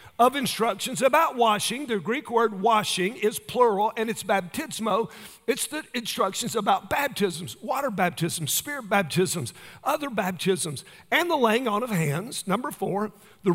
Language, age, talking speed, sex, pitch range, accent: English, 50-69, 145 wpm, male, 180-240 Hz, American